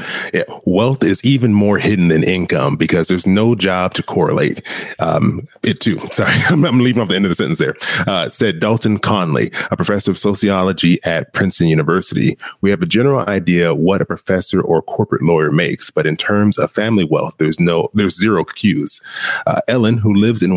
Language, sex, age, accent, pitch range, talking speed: English, male, 30-49, American, 90-115 Hz, 195 wpm